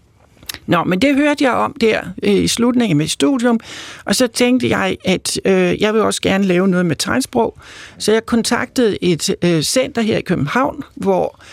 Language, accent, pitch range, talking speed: Danish, native, 175-230 Hz, 180 wpm